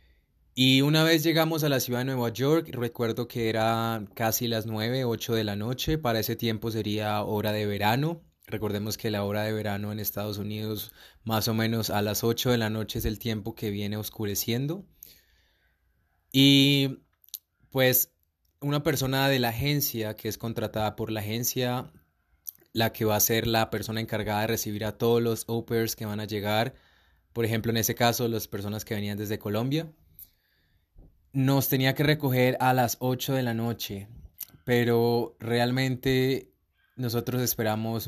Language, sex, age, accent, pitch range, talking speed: Spanish, male, 20-39, Colombian, 105-130 Hz, 170 wpm